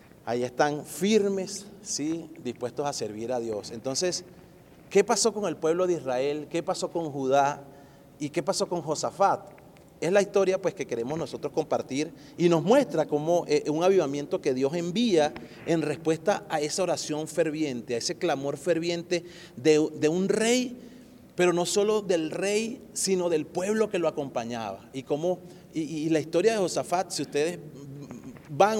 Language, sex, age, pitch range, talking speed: Spanish, male, 30-49, 150-190 Hz, 165 wpm